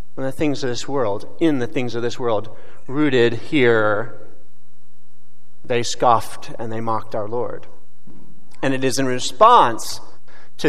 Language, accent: English, American